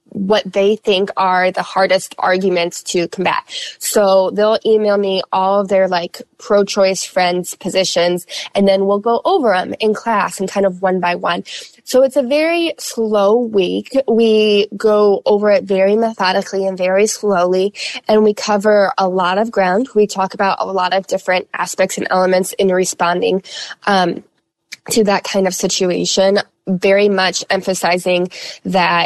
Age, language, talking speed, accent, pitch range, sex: 20-39, English, 160 wpm, American, 190-235 Hz, female